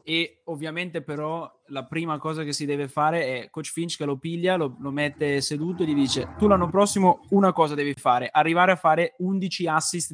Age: 20-39